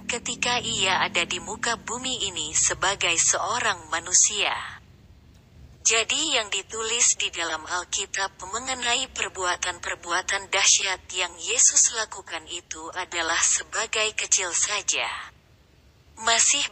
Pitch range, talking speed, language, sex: 180-230 Hz, 100 wpm, Indonesian, female